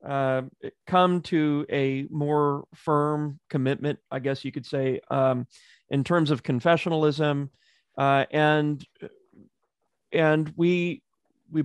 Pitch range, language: 130-150 Hz, English